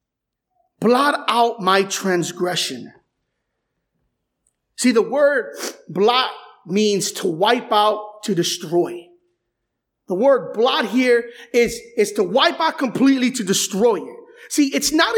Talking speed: 120 wpm